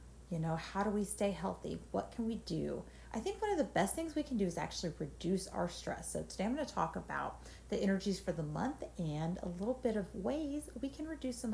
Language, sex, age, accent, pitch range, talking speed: English, female, 40-59, American, 150-215 Hz, 245 wpm